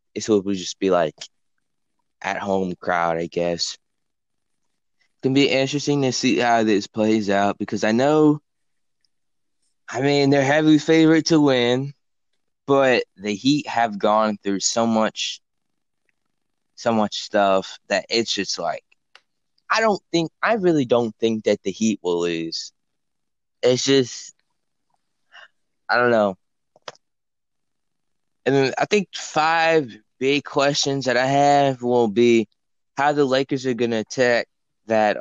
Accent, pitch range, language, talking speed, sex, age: American, 105-135 Hz, English, 140 wpm, male, 20-39